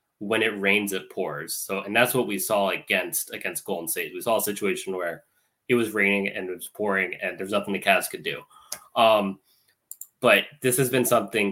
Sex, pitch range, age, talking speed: male, 100-120 Hz, 20-39, 210 wpm